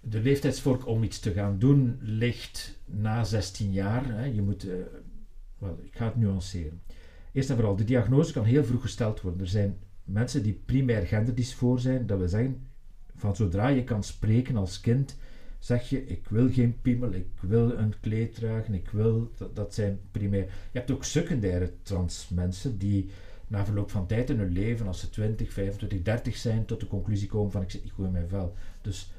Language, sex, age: Dutch, male, 50-69